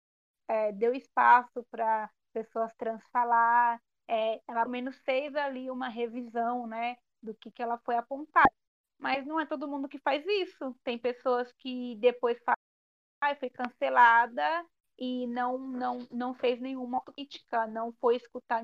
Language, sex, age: Portuguese, female, 20-39